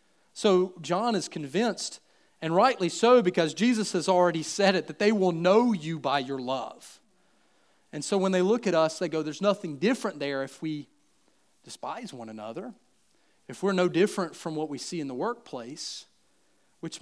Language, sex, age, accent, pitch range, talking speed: English, male, 40-59, American, 140-205 Hz, 180 wpm